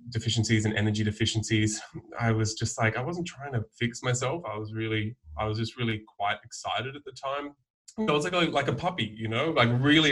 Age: 20-39